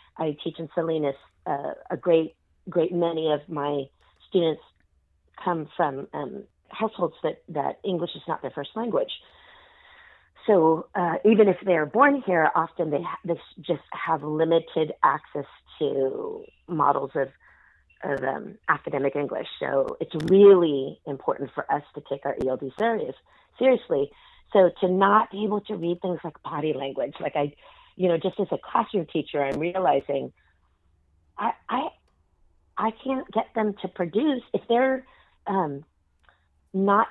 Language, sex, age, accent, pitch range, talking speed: English, female, 40-59, American, 150-190 Hz, 145 wpm